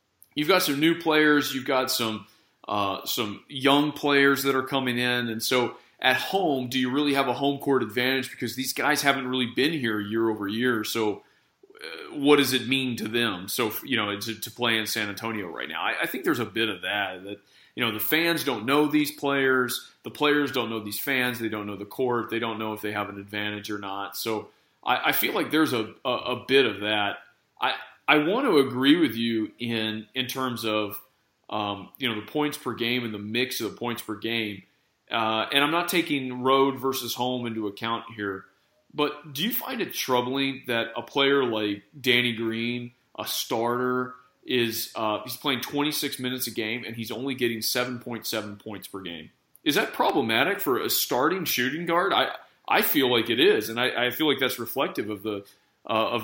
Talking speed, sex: 210 wpm, male